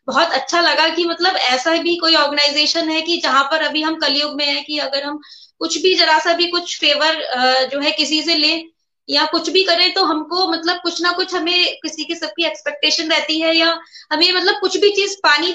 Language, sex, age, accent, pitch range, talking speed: Hindi, female, 20-39, native, 290-350 Hz, 230 wpm